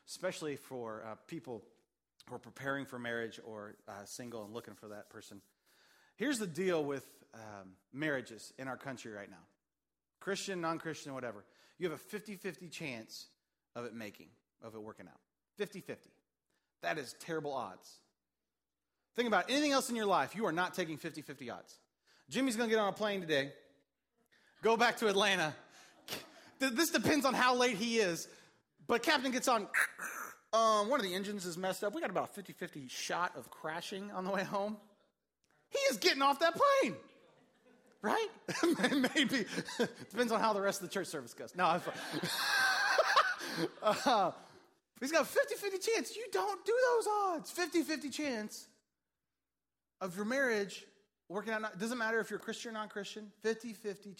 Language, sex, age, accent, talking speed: English, male, 30-49, American, 165 wpm